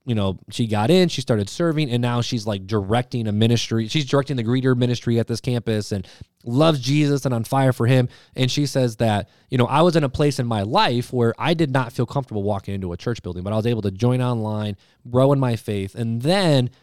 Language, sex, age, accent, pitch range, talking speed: English, male, 20-39, American, 110-140 Hz, 245 wpm